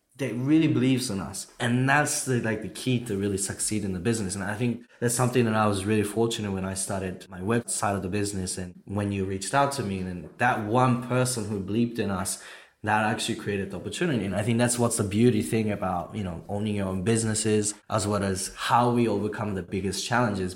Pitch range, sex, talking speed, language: 95-120 Hz, male, 230 wpm, English